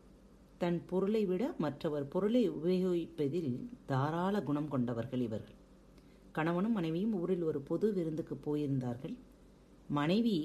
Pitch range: 145-205 Hz